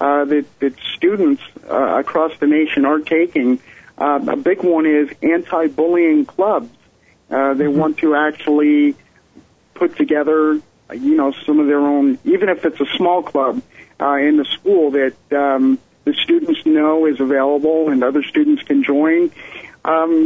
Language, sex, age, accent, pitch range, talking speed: English, male, 50-69, American, 145-200 Hz, 155 wpm